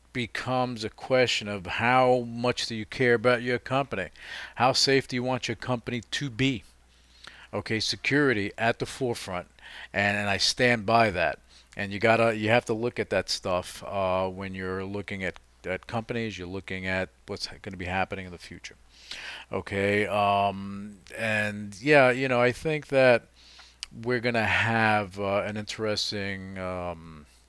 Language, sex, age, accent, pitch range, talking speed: English, male, 40-59, American, 95-120 Hz, 165 wpm